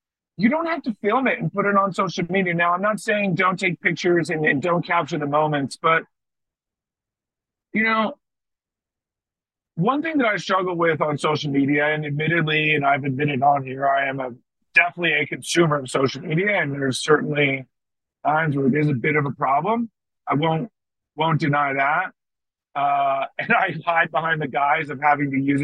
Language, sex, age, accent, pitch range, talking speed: English, male, 40-59, American, 145-205 Hz, 190 wpm